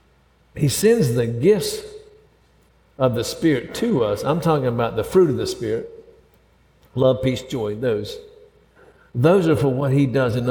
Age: 60-79